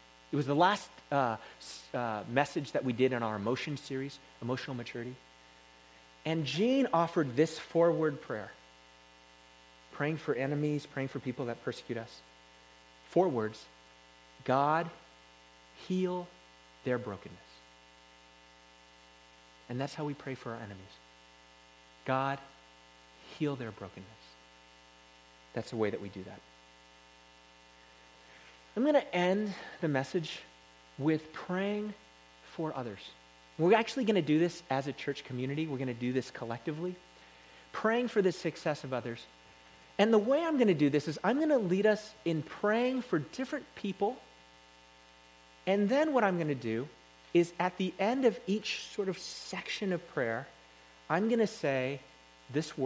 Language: English